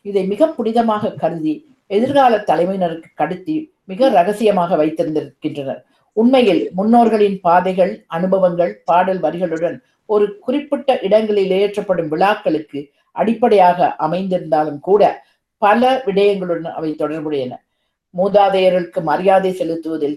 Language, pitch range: Tamil, 170-215 Hz